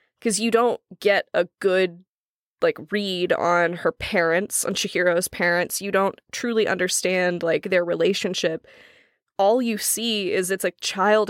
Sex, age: female, 20-39